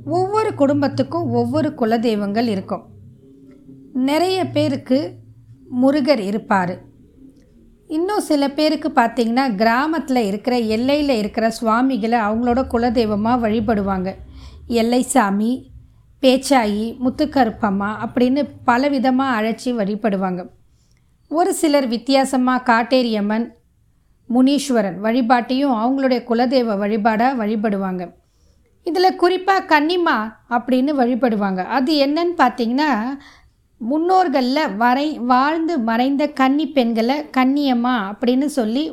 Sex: female